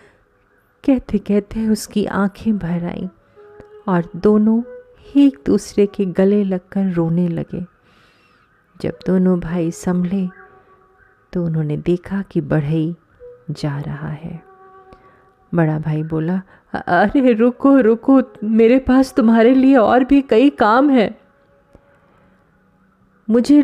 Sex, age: female, 30-49